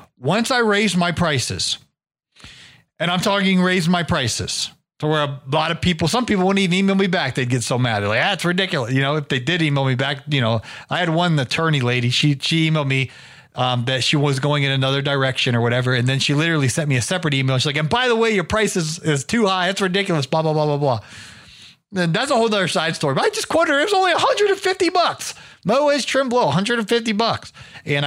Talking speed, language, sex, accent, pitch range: 240 wpm, English, male, American, 135-185 Hz